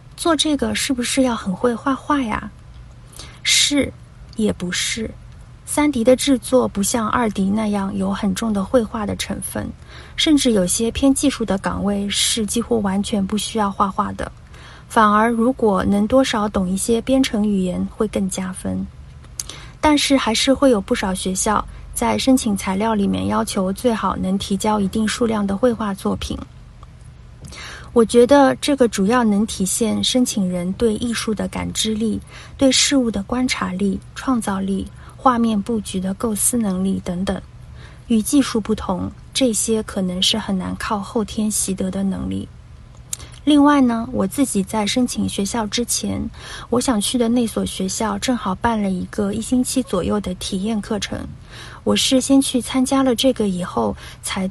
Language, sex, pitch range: Chinese, female, 195-245 Hz